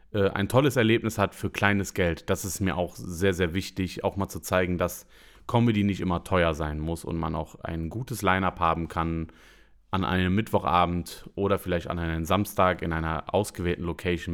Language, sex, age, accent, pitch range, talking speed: German, male, 30-49, German, 85-110 Hz, 190 wpm